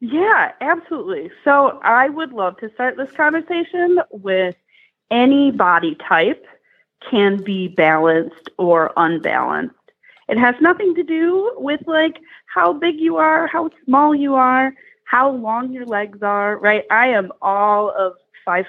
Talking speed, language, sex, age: 145 wpm, English, female, 30-49